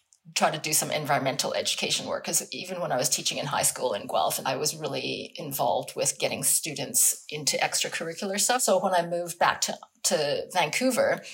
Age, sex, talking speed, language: 30-49, female, 190 wpm, English